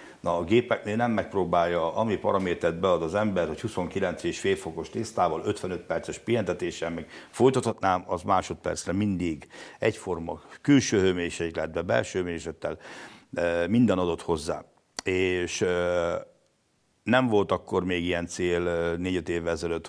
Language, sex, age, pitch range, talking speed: Hungarian, male, 60-79, 85-105 Hz, 125 wpm